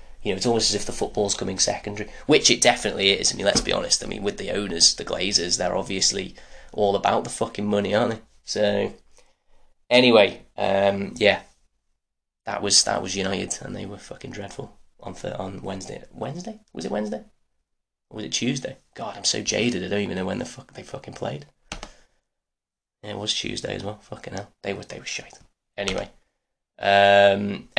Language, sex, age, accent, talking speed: English, male, 10-29, British, 195 wpm